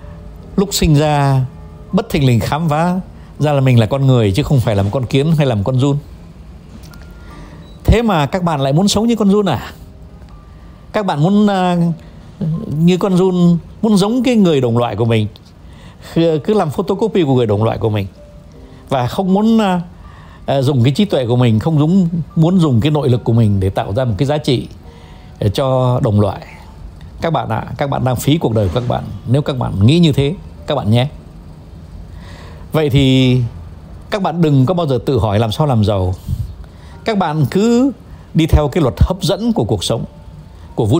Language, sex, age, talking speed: Vietnamese, male, 60-79, 200 wpm